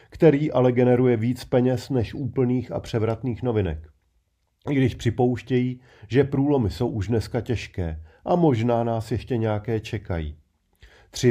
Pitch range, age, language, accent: 110-125 Hz, 40-59, Czech, native